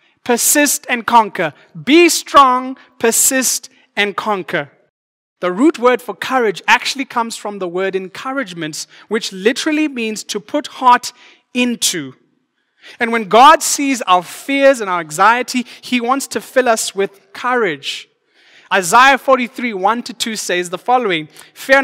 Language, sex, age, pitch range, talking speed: English, male, 20-39, 175-245 Hz, 140 wpm